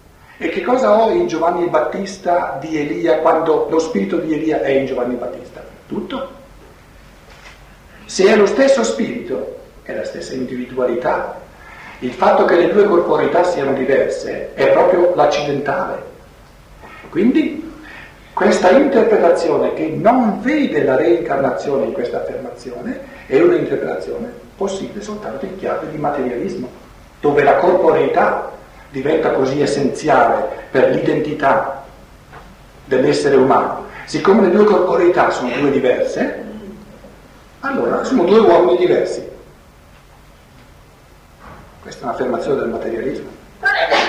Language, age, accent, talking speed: Italian, 50-69, native, 115 wpm